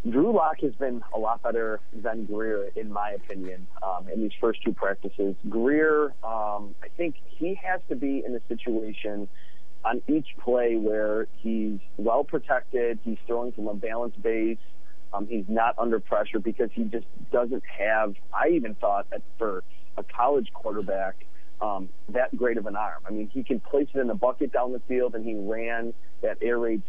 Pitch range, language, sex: 105-130 Hz, English, male